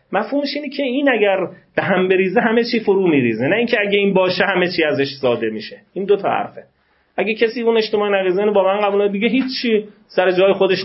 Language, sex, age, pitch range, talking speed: Persian, male, 30-49, 135-195 Hz, 225 wpm